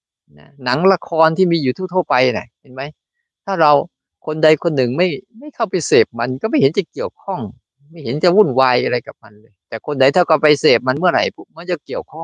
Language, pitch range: Thai, 110-155 Hz